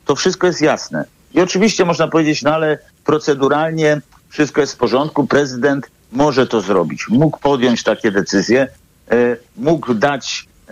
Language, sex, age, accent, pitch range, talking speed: Polish, male, 50-69, native, 125-150 Hz, 145 wpm